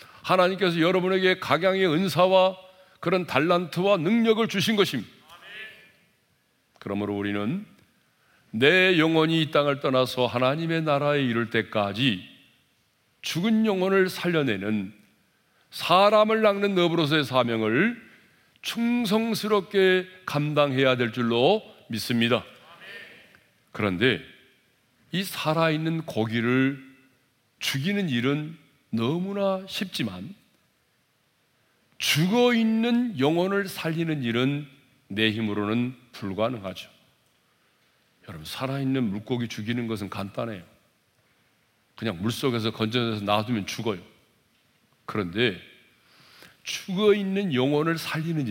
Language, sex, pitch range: Korean, male, 115-185 Hz